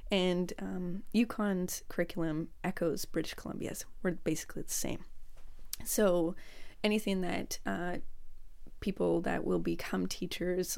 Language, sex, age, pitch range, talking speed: English, female, 20-39, 160-200 Hz, 110 wpm